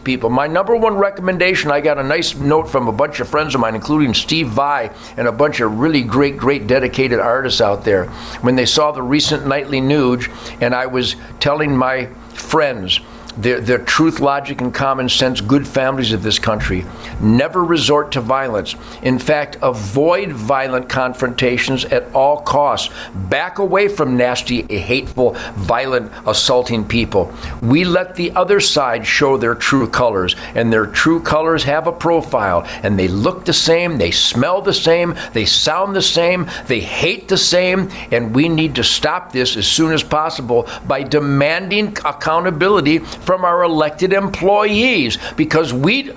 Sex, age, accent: male, 50-69, American